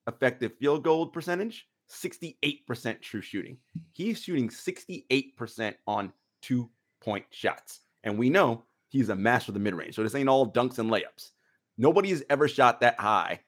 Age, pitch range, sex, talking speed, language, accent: 30-49, 110-160 Hz, male, 155 wpm, English, American